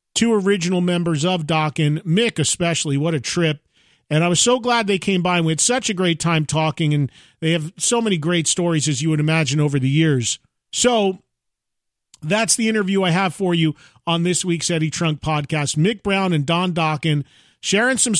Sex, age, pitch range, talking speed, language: male, 40-59, 155-190 Hz, 200 wpm, English